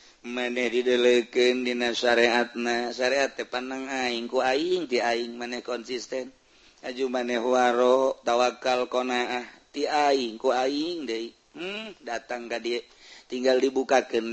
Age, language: 40-59, Indonesian